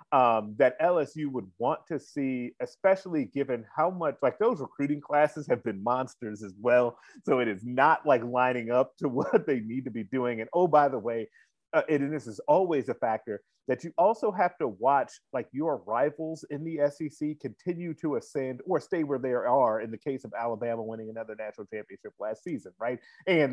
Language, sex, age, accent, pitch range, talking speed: English, male, 30-49, American, 125-165 Hz, 205 wpm